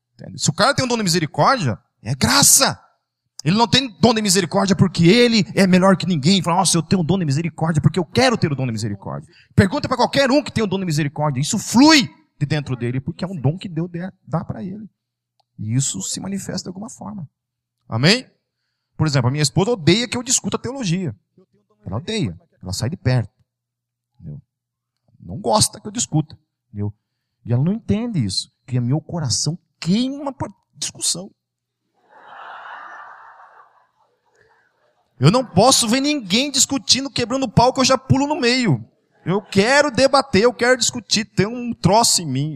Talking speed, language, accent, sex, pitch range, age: 185 wpm, Portuguese, Brazilian, male, 130-210 Hz, 40-59